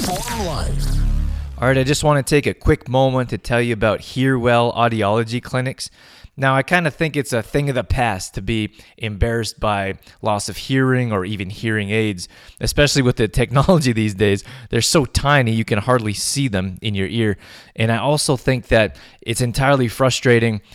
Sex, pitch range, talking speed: male, 105-130 Hz, 190 wpm